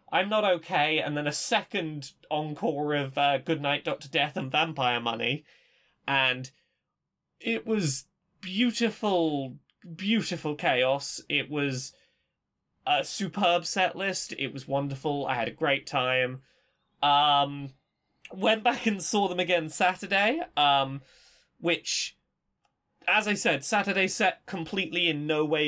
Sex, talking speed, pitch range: male, 130 wpm, 145-195 Hz